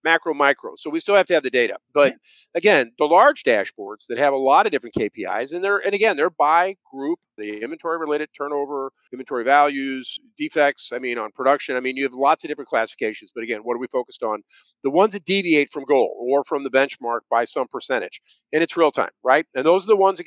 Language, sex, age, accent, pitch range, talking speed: English, male, 50-69, American, 135-185 Hz, 235 wpm